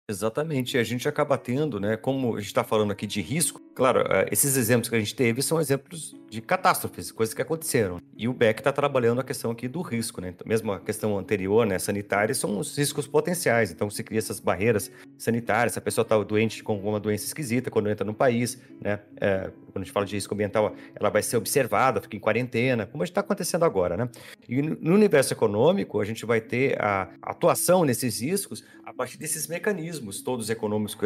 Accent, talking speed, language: Brazilian, 215 wpm, Portuguese